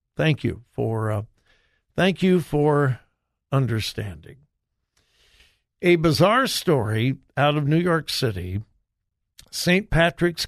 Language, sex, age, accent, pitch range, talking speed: English, male, 60-79, American, 120-170 Hz, 105 wpm